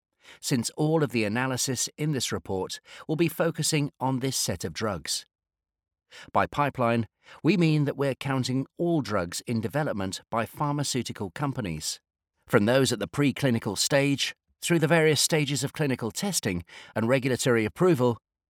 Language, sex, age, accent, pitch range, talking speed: English, male, 40-59, British, 100-145 Hz, 150 wpm